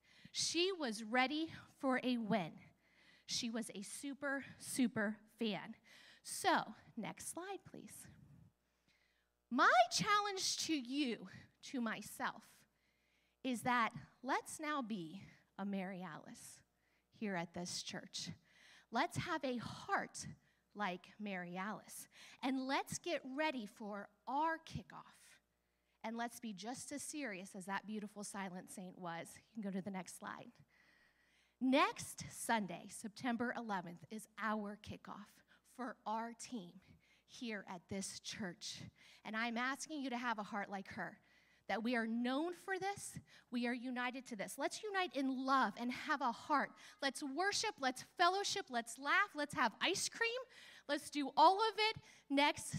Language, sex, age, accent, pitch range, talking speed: English, female, 30-49, American, 205-290 Hz, 145 wpm